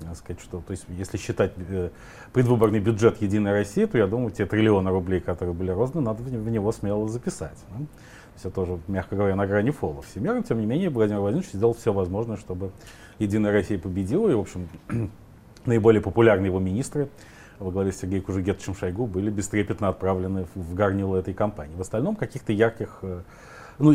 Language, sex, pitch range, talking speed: Russian, male, 95-115 Hz, 185 wpm